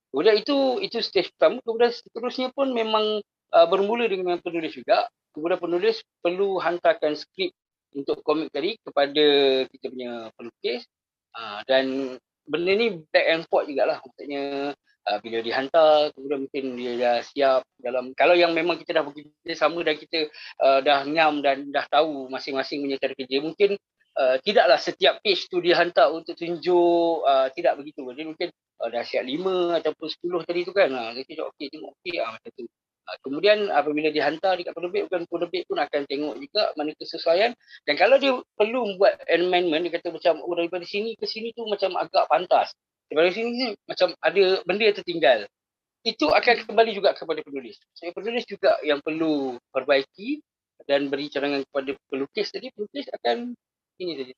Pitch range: 140-205 Hz